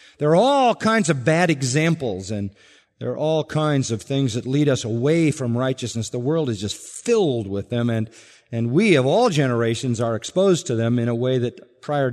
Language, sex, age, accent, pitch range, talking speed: English, male, 40-59, American, 110-140 Hz, 210 wpm